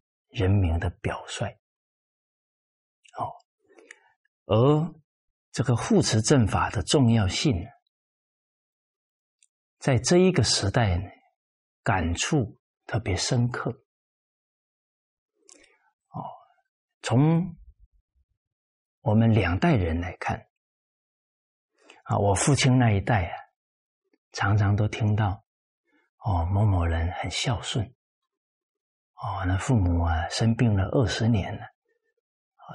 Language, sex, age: Chinese, male, 50-69